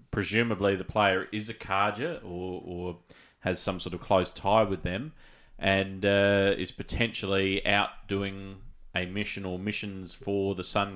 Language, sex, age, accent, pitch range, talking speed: English, male, 30-49, Australian, 90-105 Hz, 160 wpm